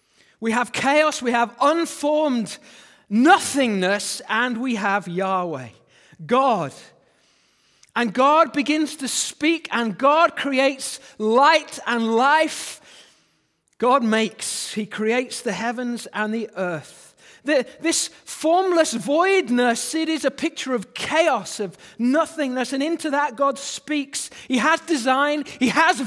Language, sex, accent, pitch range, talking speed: English, male, British, 200-285 Hz, 120 wpm